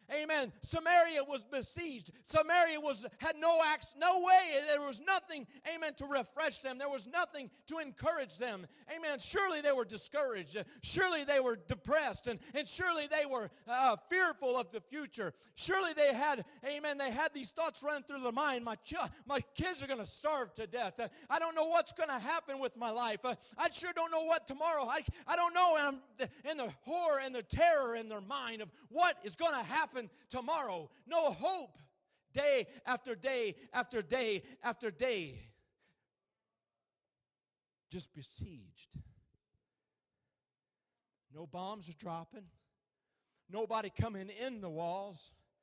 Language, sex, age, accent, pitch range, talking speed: English, male, 40-59, American, 230-315 Hz, 160 wpm